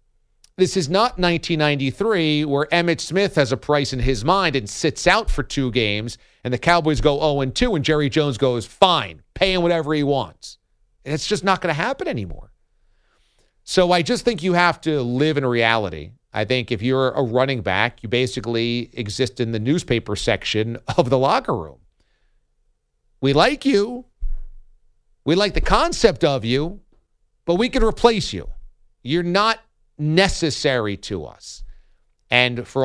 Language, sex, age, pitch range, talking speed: English, male, 50-69, 115-165 Hz, 165 wpm